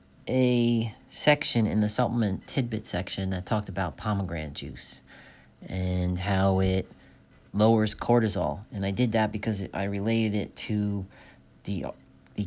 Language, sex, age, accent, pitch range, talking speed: English, male, 40-59, American, 100-120 Hz, 135 wpm